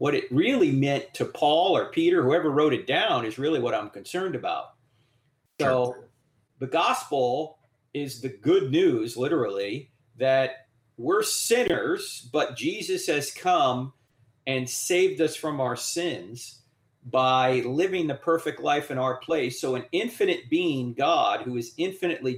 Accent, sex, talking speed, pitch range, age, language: American, male, 145 wpm, 125-170 Hz, 40-59, English